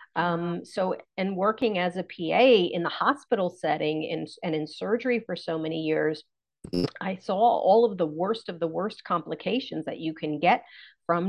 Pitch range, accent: 170-210 Hz, American